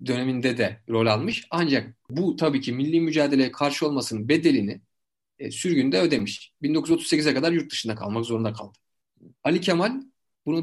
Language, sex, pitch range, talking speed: Turkish, male, 115-180 Hz, 140 wpm